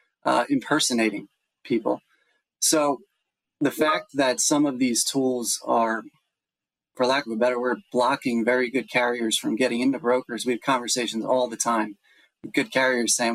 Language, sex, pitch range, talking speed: English, male, 115-140 Hz, 160 wpm